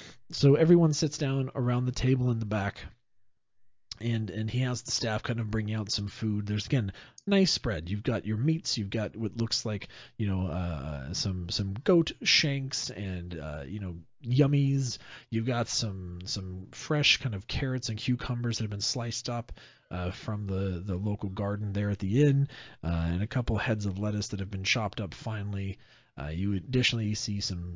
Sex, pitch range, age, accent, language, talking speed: male, 100-130 Hz, 40-59, American, English, 195 wpm